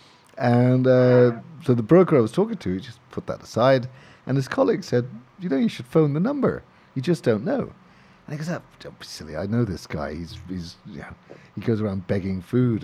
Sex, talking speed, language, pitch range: male, 235 wpm, English, 110-155 Hz